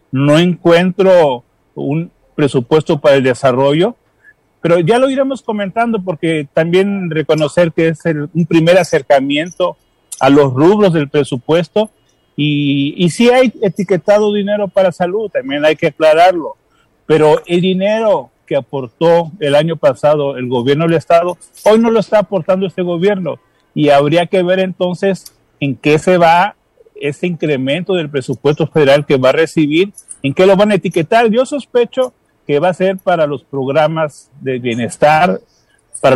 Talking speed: 155 wpm